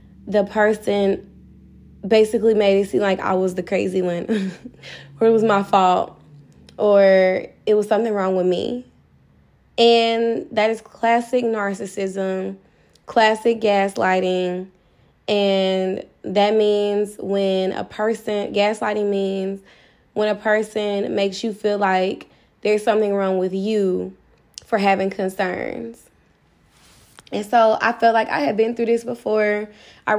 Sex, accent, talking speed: female, American, 130 wpm